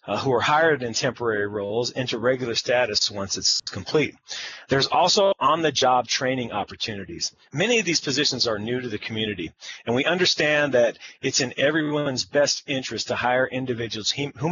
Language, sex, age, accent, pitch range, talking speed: English, male, 40-59, American, 115-150 Hz, 165 wpm